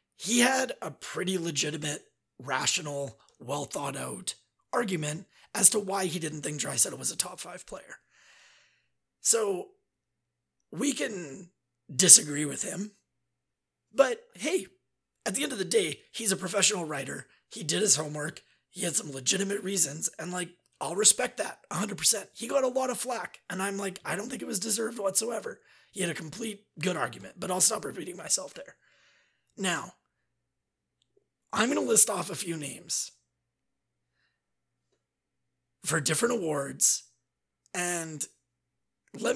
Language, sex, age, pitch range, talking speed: English, male, 30-49, 150-225 Hz, 145 wpm